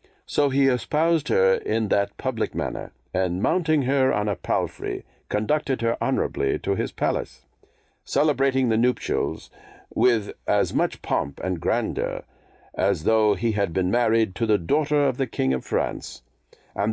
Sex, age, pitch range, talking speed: male, 60-79, 110-155 Hz, 155 wpm